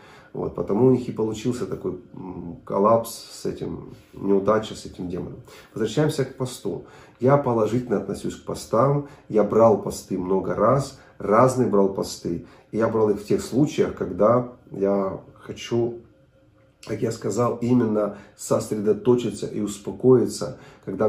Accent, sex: native, male